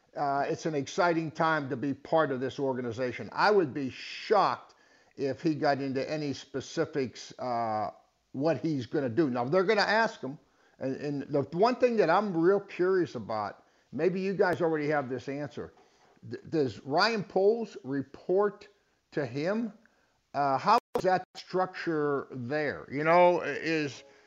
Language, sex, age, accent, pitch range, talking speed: English, male, 50-69, American, 140-185 Hz, 165 wpm